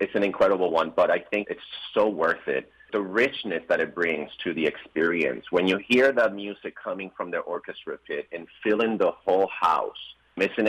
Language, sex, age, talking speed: English, male, 30-49, 200 wpm